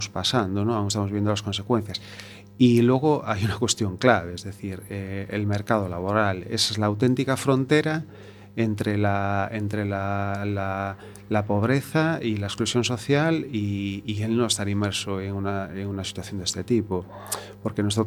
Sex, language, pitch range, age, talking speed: male, Spanish, 100-115 Hz, 30-49, 165 wpm